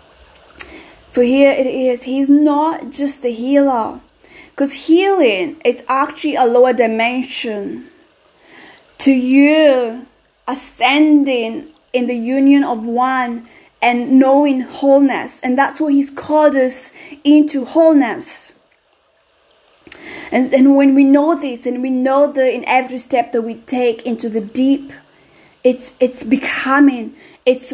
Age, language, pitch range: 20-39, English, 245-285 Hz